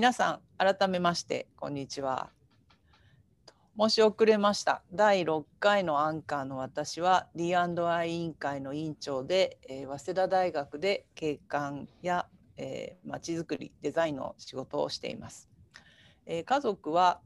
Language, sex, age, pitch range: Japanese, female, 50-69, 140-185 Hz